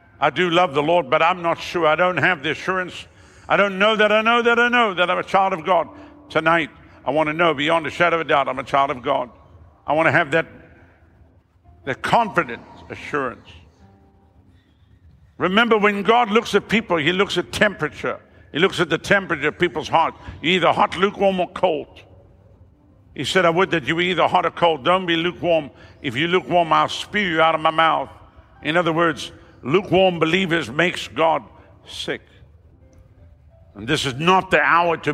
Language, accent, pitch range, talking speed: English, American, 110-180 Hz, 200 wpm